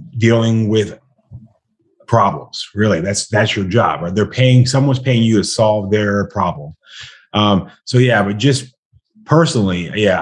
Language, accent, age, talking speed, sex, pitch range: English, American, 30-49, 145 wpm, male, 95-115 Hz